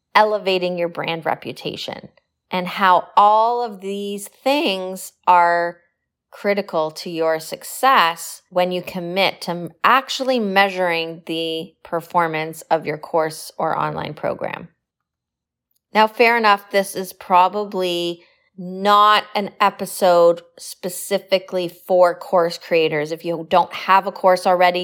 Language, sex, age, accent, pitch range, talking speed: English, female, 20-39, American, 170-200 Hz, 120 wpm